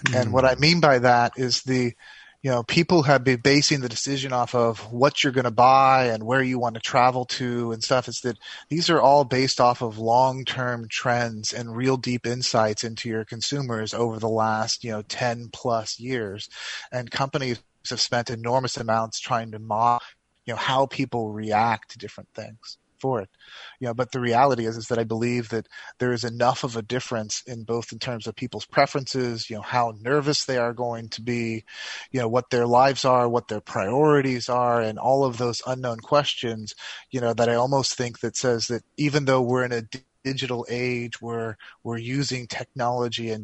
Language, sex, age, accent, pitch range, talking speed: English, male, 30-49, American, 115-130 Hz, 205 wpm